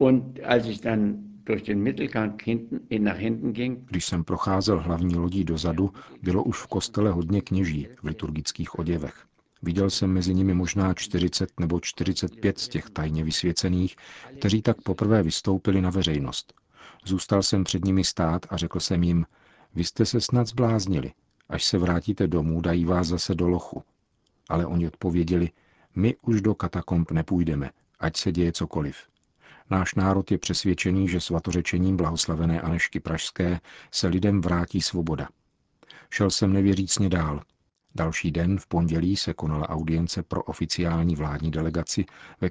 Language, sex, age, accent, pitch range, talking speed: Czech, male, 50-69, native, 85-100 Hz, 135 wpm